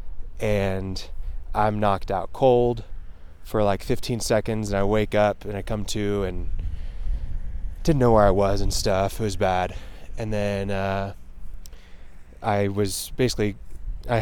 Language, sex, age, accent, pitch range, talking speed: English, male, 20-39, American, 90-110 Hz, 150 wpm